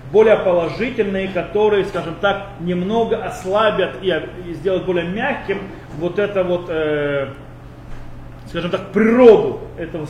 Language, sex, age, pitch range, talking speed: Russian, male, 30-49, 150-220 Hz, 120 wpm